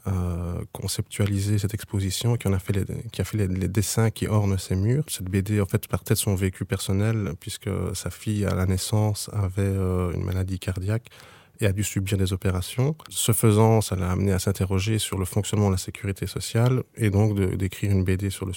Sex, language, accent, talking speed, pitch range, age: male, French, French, 210 wpm, 95-110 Hz, 20-39